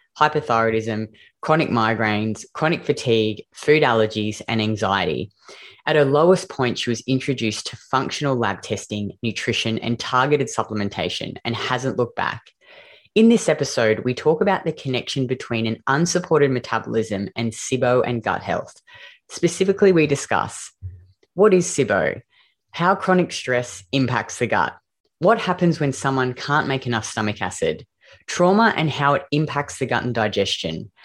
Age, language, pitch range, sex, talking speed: 20-39, English, 110-155 Hz, female, 145 wpm